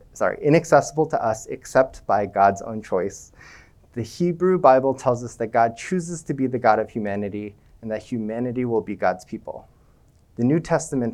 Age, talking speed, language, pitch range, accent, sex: 30-49, 180 wpm, English, 105-135 Hz, American, male